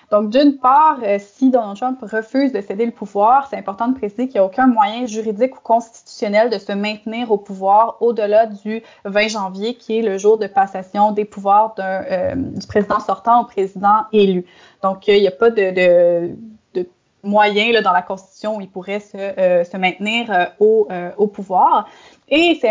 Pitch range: 195-240 Hz